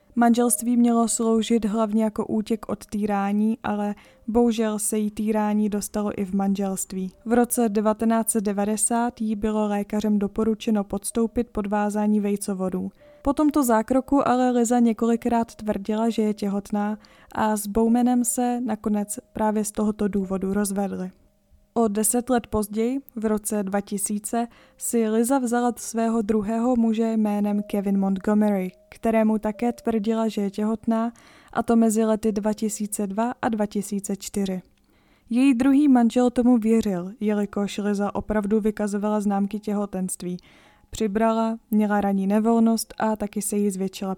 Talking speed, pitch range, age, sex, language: 130 wpm, 205-230 Hz, 20-39, female, Czech